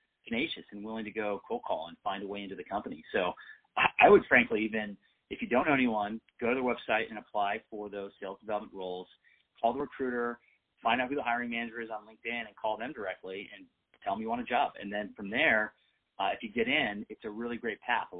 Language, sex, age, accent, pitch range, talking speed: English, male, 30-49, American, 95-110 Hz, 240 wpm